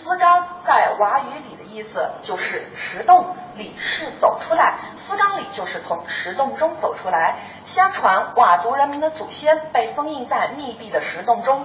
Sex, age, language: female, 30-49, Chinese